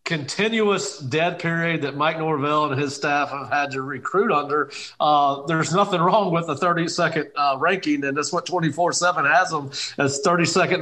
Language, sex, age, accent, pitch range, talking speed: English, male, 40-59, American, 150-175 Hz, 180 wpm